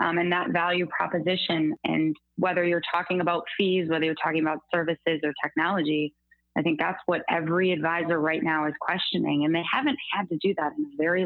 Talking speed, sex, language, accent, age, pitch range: 205 wpm, female, English, American, 20-39, 160-190 Hz